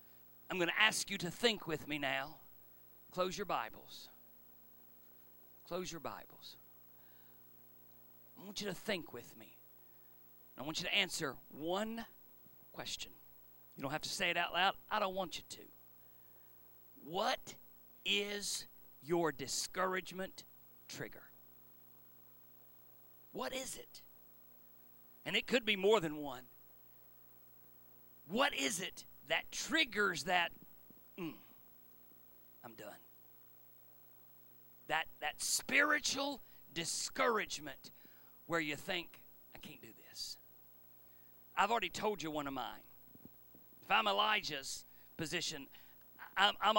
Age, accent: 40-59, American